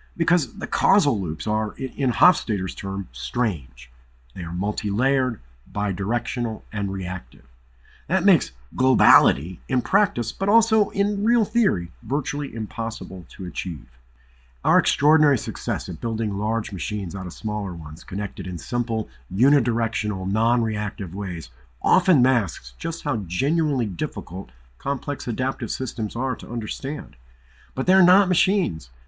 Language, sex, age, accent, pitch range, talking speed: English, male, 50-69, American, 80-125 Hz, 130 wpm